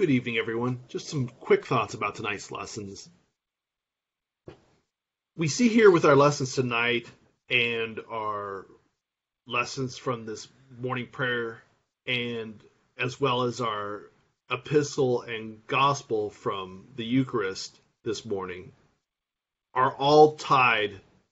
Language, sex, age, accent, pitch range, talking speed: English, male, 40-59, American, 115-135 Hz, 115 wpm